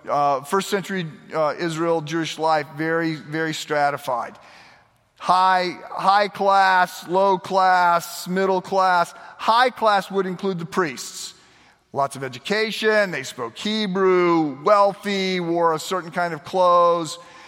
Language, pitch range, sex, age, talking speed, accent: English, 160-200 Hz, male, 40-59, 125 wpm, American